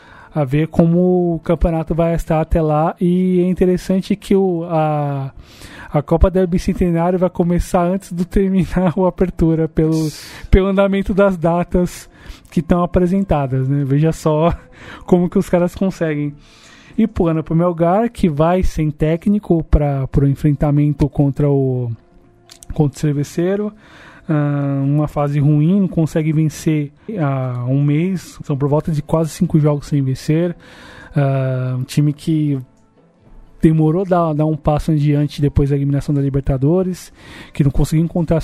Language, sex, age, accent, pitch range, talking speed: Portuguese, male, 20-39, Brazilian, 145-175 Hz, 150 wpm